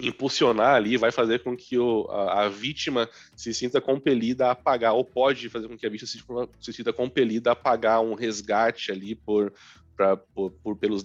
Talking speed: 195 wpm